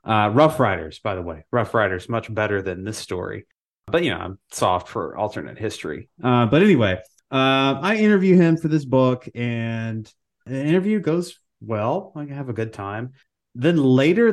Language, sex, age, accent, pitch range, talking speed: English, male, 30-49, American, 115-160 Hz, 185 wpm